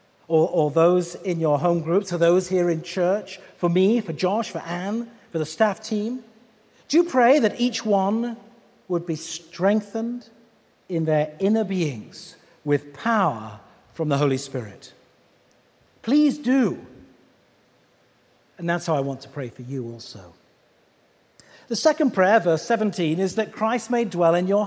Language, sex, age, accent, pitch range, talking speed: English, male, 50-69, British, 160-230 Hz, 160 wpm